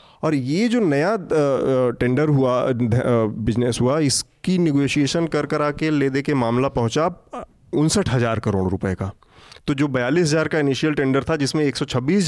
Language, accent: English, Indian